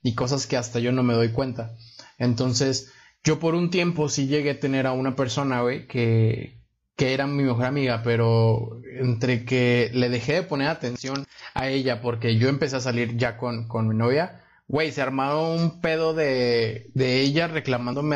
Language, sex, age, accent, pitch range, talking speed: Spanish, male, 30-49, Mexican, 120-140 Hz, 190 wpm